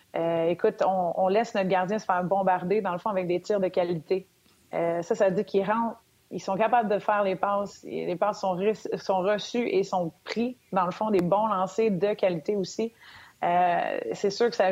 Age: 30-49